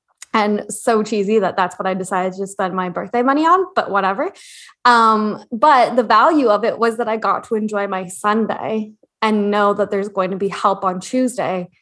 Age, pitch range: 20-39, 190-230 Hz